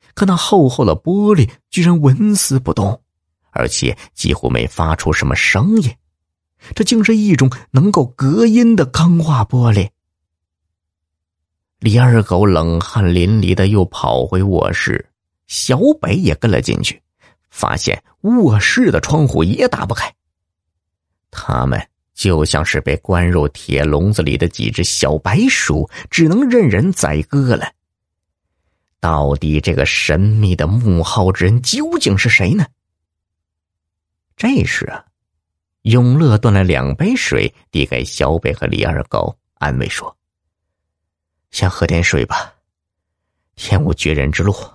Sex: male